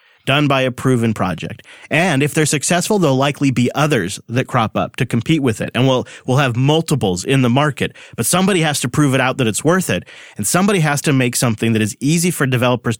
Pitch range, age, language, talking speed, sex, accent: 120-160 Hz, 30-49, English, 230 wpm, male, American